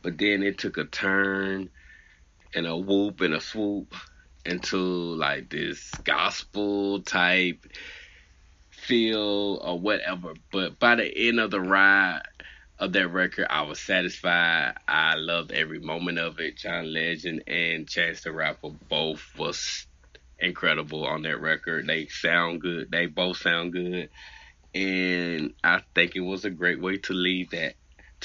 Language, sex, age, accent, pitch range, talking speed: English, male, 20-39, American, 85-100 Hz, 145 wpm